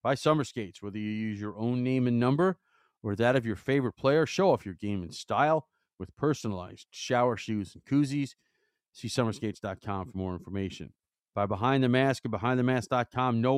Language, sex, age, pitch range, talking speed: English, male, 40-59, 105-135 Hz, 180 wpm